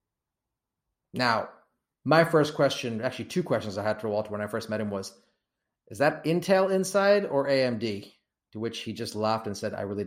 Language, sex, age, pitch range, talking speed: English, male, 30-49, 110-175 Hz, 190 wpm